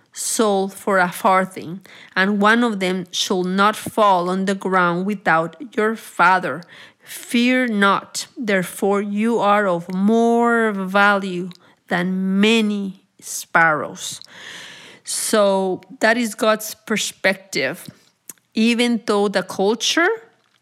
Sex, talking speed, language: female, 110 wpm, English